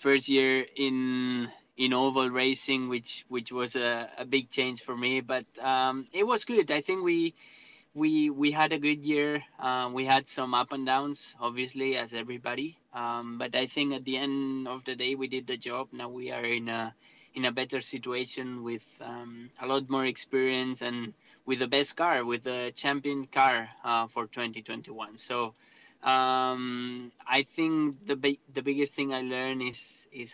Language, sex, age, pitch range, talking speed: English, male, 20-39, 120-135 Hz, 190 wpm